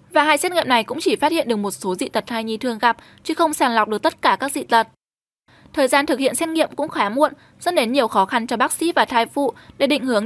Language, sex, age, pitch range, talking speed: Vietnamese, female, 10-29, 230-305 Hz, 300 wpm